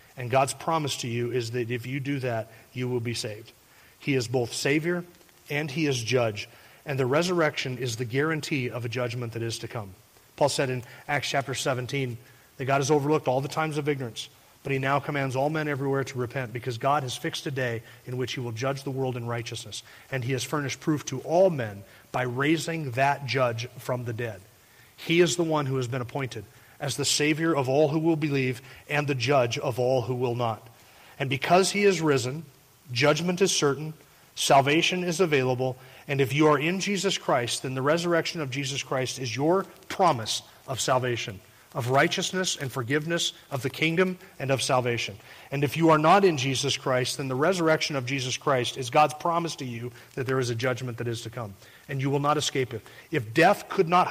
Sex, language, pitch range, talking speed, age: male, English, 125-150 Hz, 210 wpm, 30-49